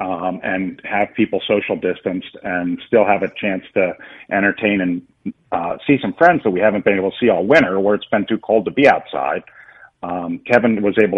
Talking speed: 210 wpm